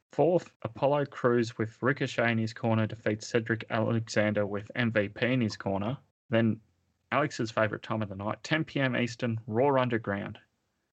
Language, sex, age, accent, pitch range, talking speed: English, male, 30-49, Australian, 105-125 Hz, 150 wpm